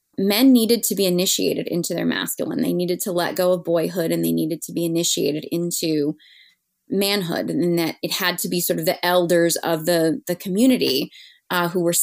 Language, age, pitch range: English, 20-39, 170-200 Hz